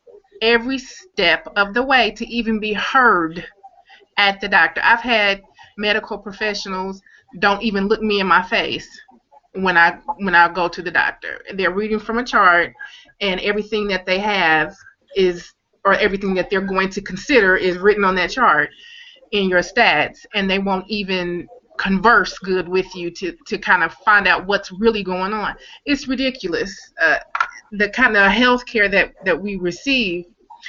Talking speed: 170 wpm